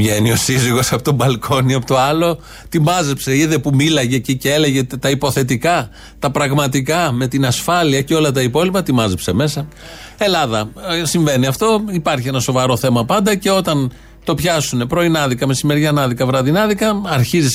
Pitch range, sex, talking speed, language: 115-160 Hz, male, 160 wpm, Greek